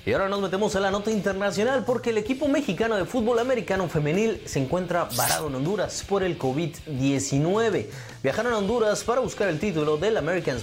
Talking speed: 185 wpm